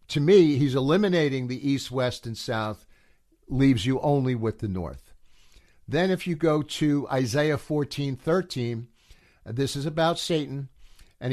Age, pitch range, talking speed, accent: 60-79, 125-165 Hz, 145 wpm, American